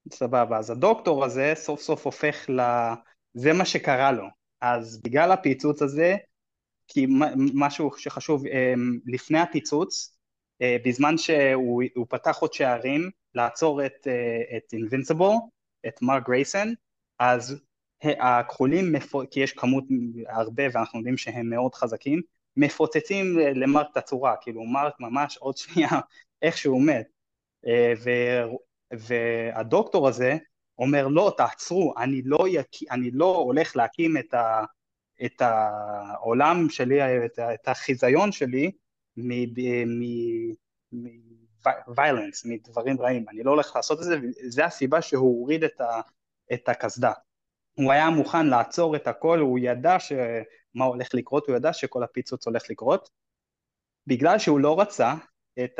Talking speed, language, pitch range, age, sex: 130 wpm, Hebrew, 120-150 Hz, 20-39, male